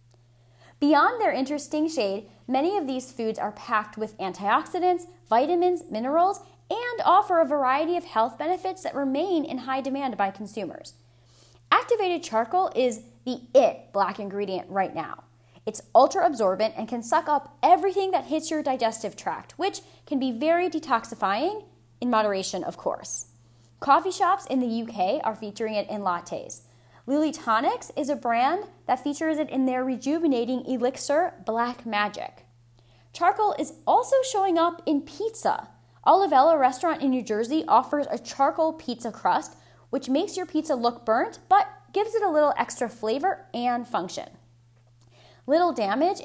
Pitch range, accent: 210-330 Hz, American